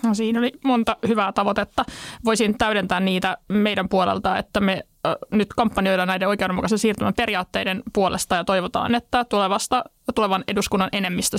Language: Finnish